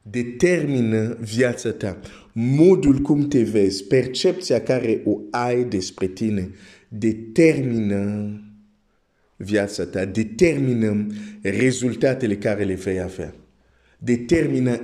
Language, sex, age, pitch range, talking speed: Romanian, male, 50-69, 105-150 Hz, 95 wpm